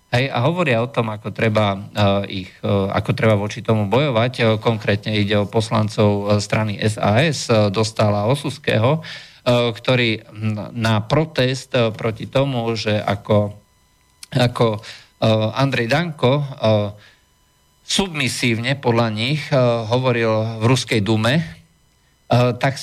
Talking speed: 105 wpm